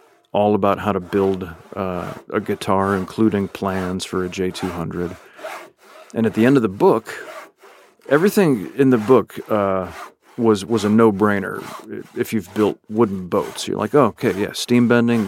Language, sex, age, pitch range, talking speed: English, male, 40-59, 95-115 Hz, 160 wpm